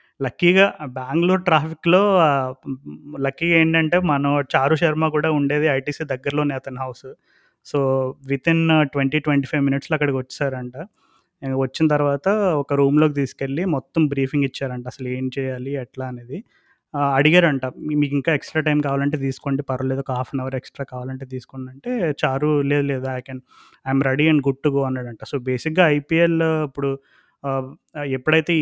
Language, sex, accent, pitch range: Telugu, male, native, 135-155 Hz